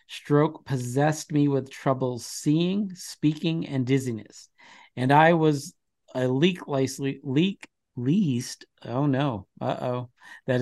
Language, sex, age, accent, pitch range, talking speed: English, male, 50-69, American, 130-155 Hz, 120 wpm